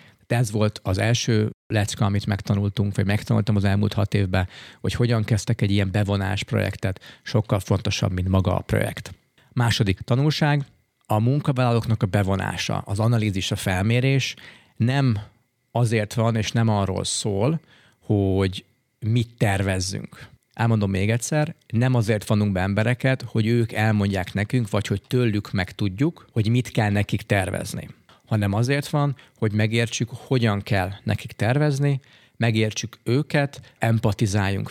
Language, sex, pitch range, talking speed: Hungarian, male, 100-125 Hz, 140 wpm